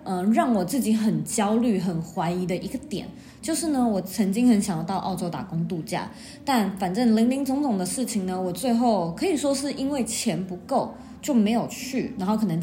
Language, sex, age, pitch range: Chinese, female, 20-39, 190-250 Hz